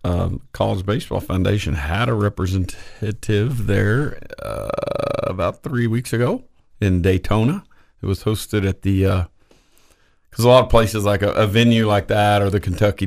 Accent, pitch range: American, 90-110 Hz